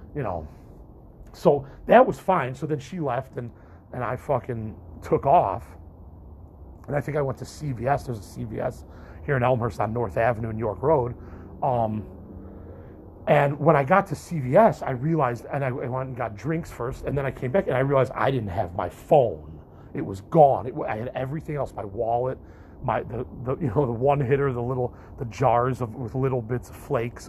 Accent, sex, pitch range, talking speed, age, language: American, male, 105-140 Hz, 200 wpm, 30-49, English